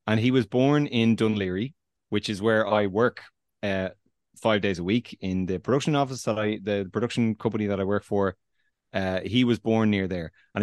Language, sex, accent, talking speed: English, male, Irish, 205 wpm